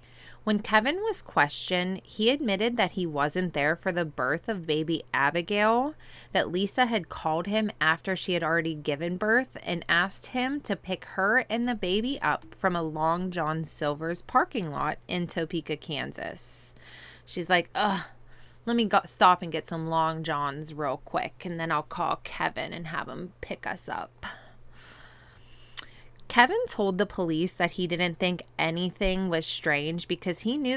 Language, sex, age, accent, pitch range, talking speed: English, female, 20-39, American, 160-195 Hz, 165 wpm